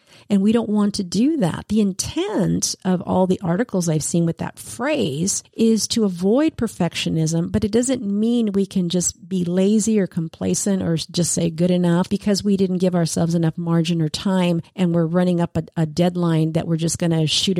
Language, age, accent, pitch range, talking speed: English, 50-69, American, 170-215 Hz, 205 wpm